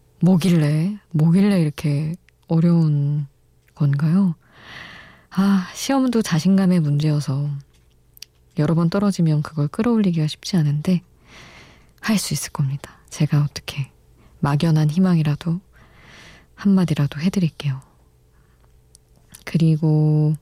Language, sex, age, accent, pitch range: Korean, female, 20-39, native, 145-180 Hz